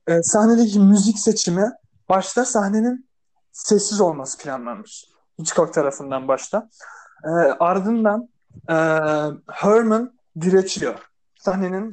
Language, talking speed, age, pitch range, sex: Turkish, 90 wpm, 30-49, 175-225 Hz, male